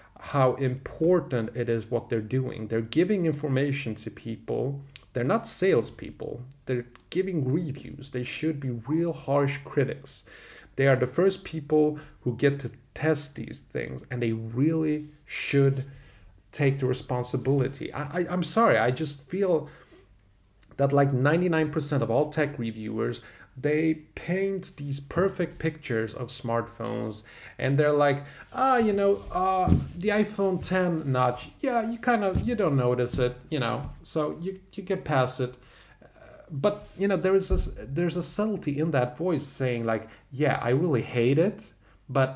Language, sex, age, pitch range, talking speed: English, male, 30-49, 120-160 Hz, 160 wpm